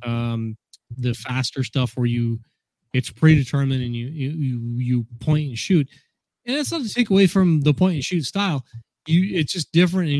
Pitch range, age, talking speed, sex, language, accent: 125-160 Hz, 30-49, 190 wpm, male, English, American